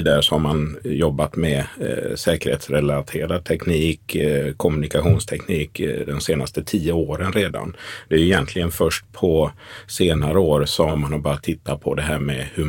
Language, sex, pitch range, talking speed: Swedish, male, 75-90 Hz, 165 wpm